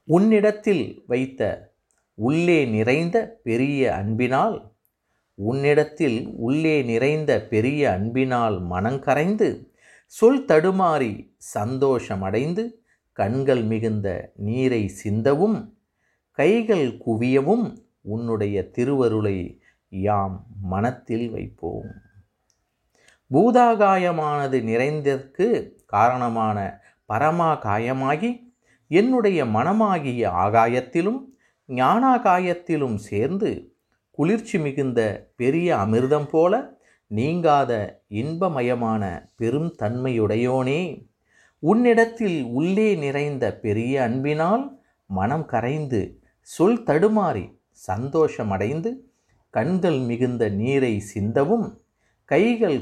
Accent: native